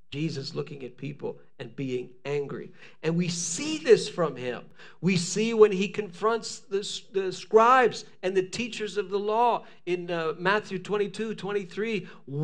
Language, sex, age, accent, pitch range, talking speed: English, male, 50-69, American, 170-225 Hz, 150 wpm